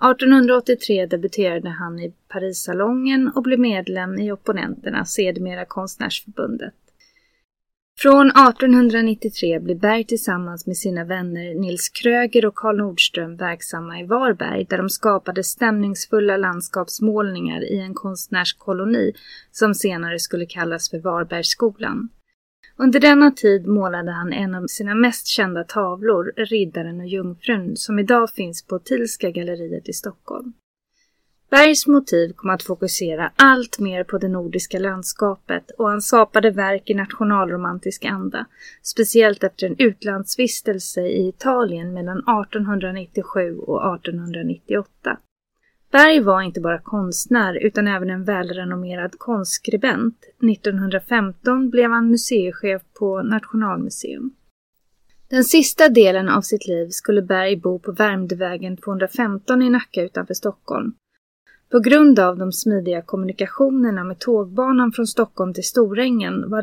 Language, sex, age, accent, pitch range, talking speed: Swedish, female, 20-39, native, 185-235 Hz, 125 wpm